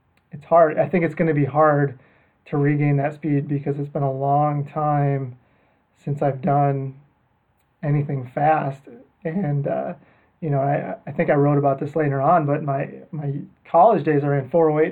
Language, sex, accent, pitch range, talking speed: English, male, American, 140-165 Hz, 180 wpm